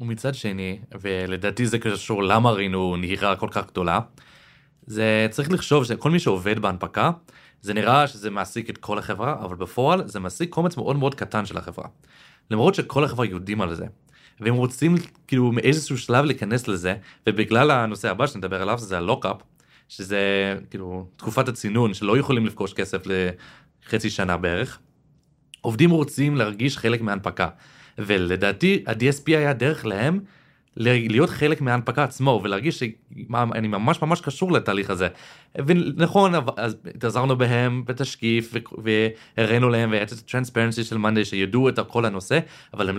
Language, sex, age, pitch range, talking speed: Hebrew, male, 30-49, 100-140 Hz, 145 wpm